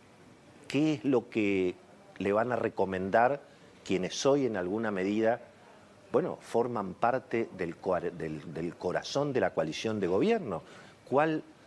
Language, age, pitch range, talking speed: Spanish, 50-69, 95-135 Hz, 135 wpm